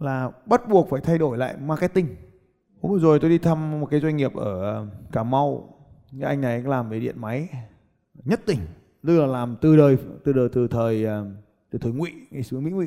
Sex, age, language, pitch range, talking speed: male, 20-39, Vietnamese, 115-150 Hz, 210 wpm